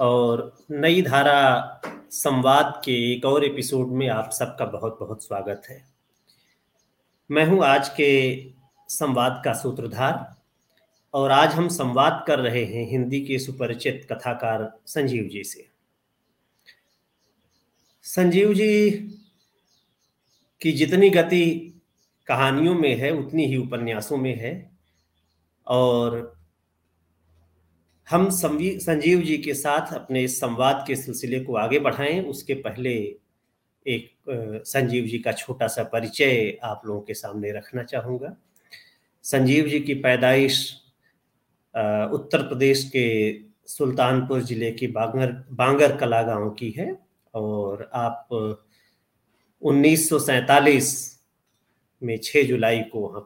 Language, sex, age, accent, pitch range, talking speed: Hindi, male, 40-59, native, 115-145 Hz, 115 wpm